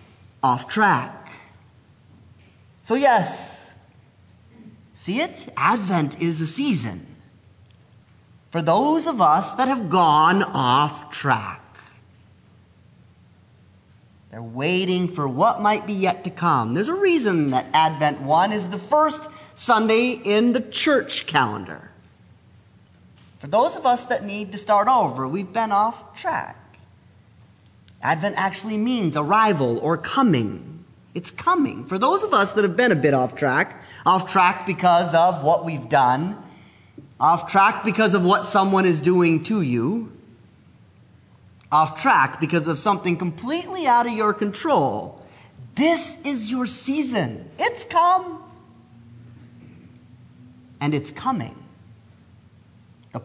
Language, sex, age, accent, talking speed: English, male, 30-49, American, 125 wpm